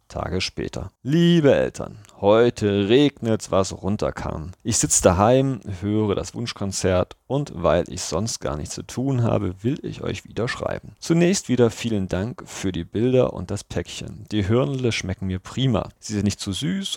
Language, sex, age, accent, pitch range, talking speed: German, male, 40-59, German, 90-120 Hz, 170 wpm